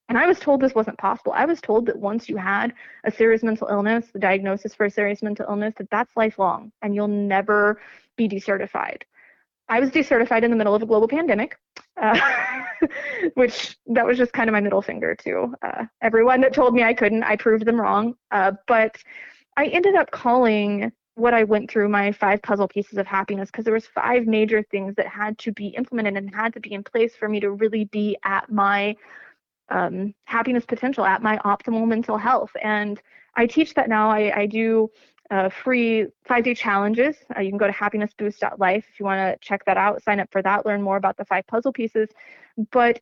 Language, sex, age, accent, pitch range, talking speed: English, female, 20-39, American, 205-235 Hz, 210 wpm